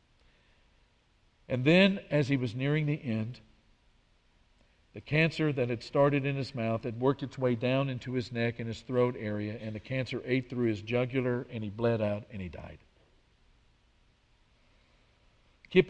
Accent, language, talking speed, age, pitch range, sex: American, English, 160 wpm, 50-69, 115-135 Hz, male